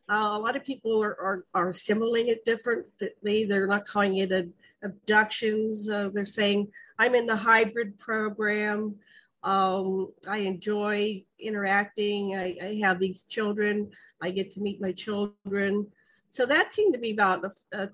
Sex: female